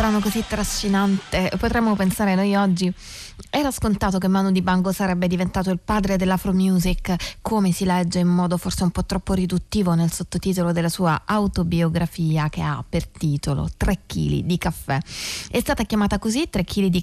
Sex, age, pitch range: female, 20-39, 165-195 Hz